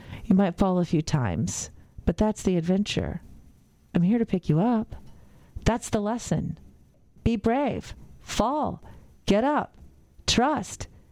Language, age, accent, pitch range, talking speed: English, 40-59, American, 155-230 Hz, 135 wpm